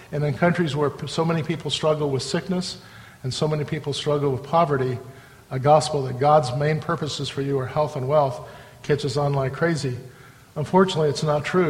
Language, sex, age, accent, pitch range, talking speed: English, male, 50-69, American, 140-175 Hz, 190 wpm